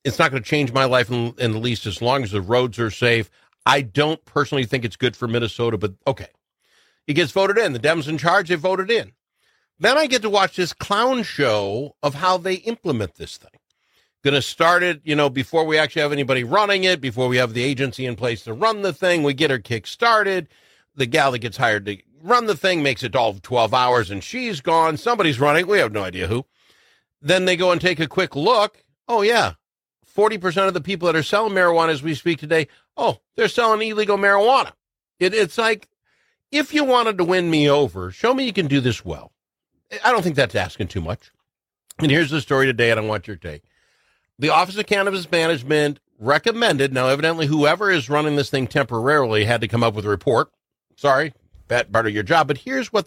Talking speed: 220 wpm